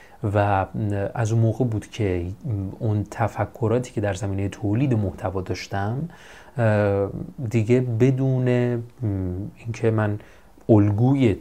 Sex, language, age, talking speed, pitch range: male, Persian, 30-49, 100 wpm, 105-135 Hz